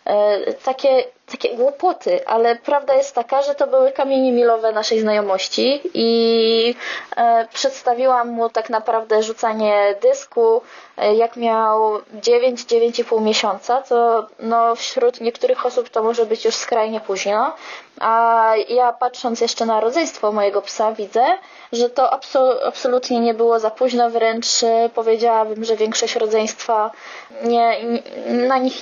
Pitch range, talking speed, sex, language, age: 215-250 Hz, 130 wpm, female, Polish, 20-39